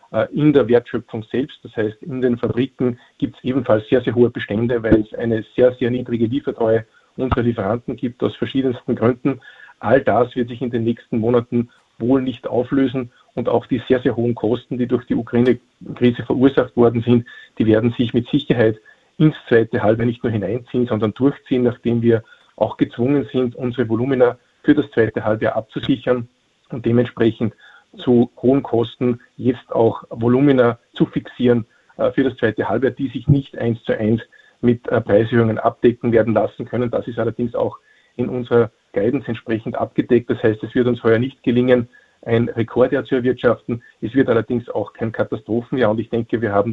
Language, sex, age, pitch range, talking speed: German, male, 50-69, 115-130 Hz, 175 wpm